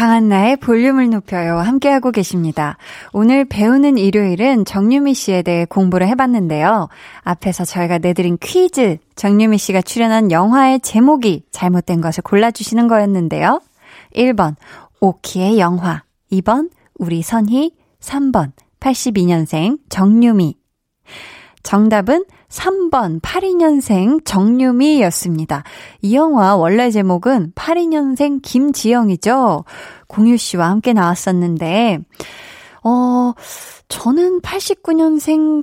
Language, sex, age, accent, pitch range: Korean, female, 20-39, native, 180-270 Hz